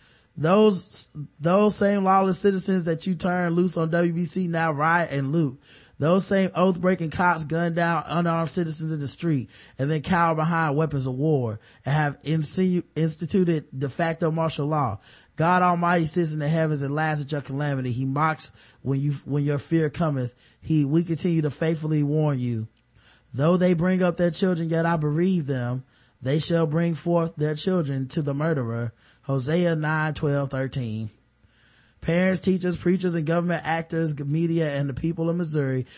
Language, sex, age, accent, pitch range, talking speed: English, male, 20-39, American, 140-170 Hz, 170 wpm